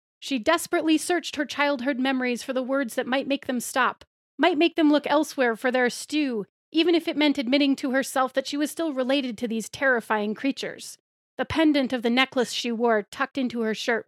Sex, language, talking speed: female, English, 210 wpm